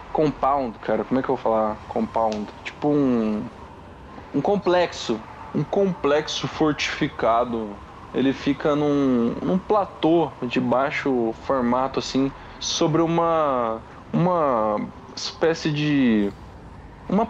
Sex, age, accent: male, 20-39, Brazilian